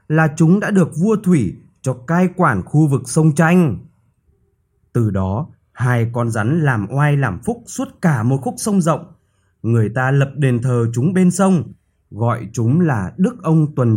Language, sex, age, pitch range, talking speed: Vietnamese, male, 20-39, 120-165 Hz, 180 wpm